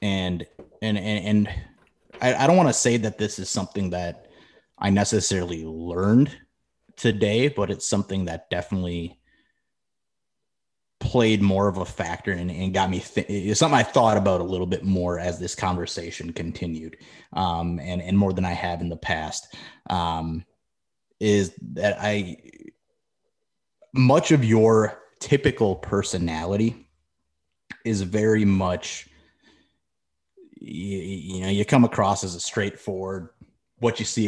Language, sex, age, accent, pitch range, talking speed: English, male, 30-49, American, 85-110 Hz, 135 wpm